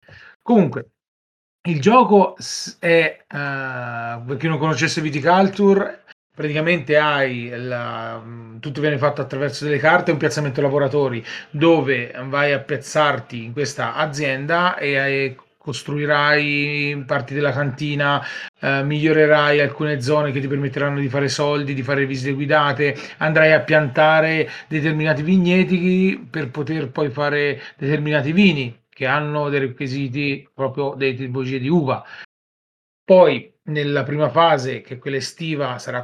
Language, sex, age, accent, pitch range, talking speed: Italian, male, 40-59, native, 140-160 Hz, 130 wpm